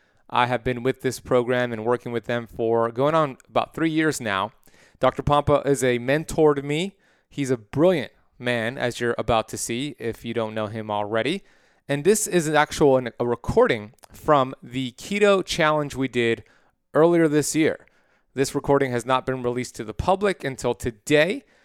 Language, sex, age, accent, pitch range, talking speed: English, male, 30-49, American, 120-150 Hz, 180 wpm